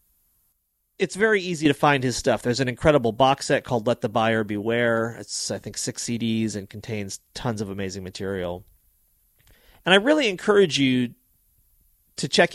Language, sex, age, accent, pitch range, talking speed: English, male, 30-49, American, 105-145 Hz, 165 wpm